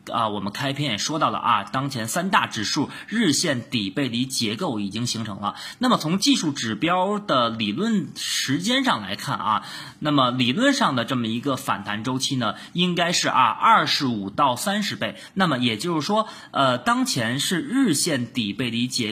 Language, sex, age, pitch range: Chinese, male, 20-39, 115-180 Hz